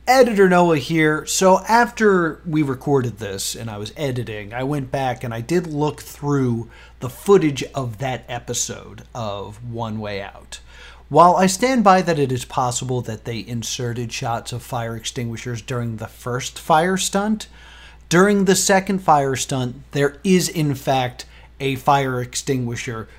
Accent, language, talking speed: American, English, 160 wpm